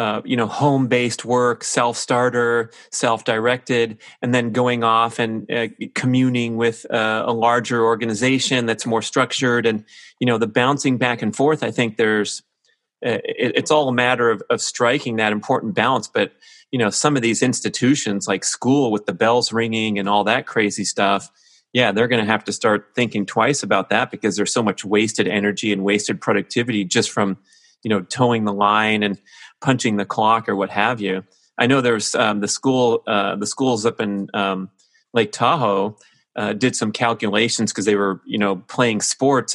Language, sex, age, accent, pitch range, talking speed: English, male, 30-49, American, 105-125 Hz, 185 wpm